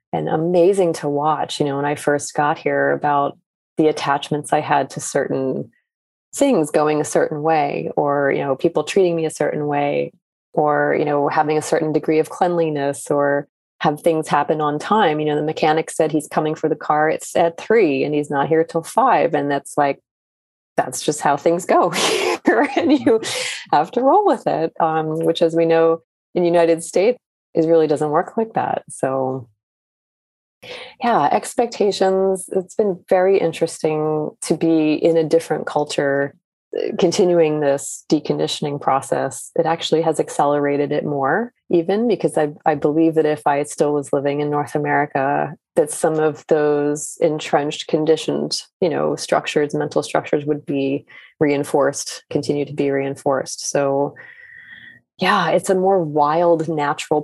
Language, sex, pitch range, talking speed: English, female, 145-170 Hz, 165 wpm